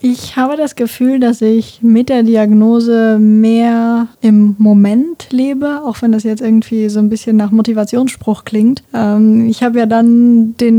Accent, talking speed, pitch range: German, 165 wpm, 215-235 Hz